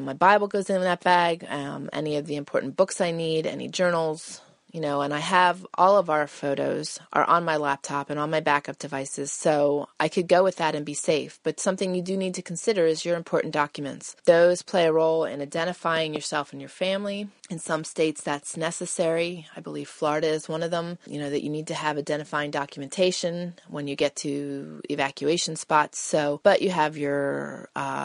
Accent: American